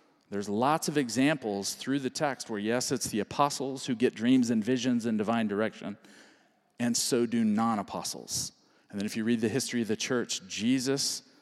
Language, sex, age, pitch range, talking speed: English, male, 40-59, 115-145 Hz, 185 wpm